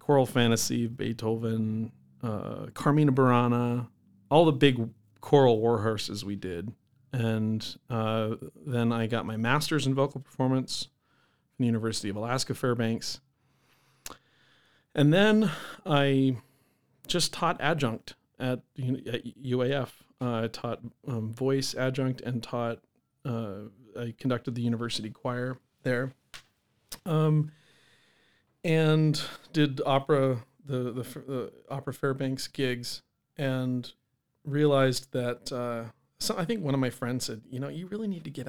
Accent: American